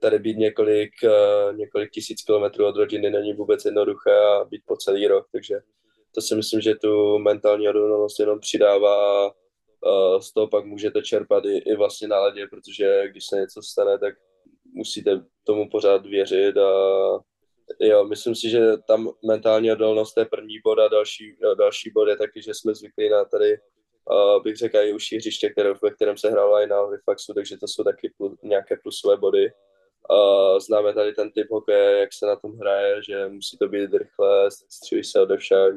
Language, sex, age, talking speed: Czech, male, 20-39, 180 wpm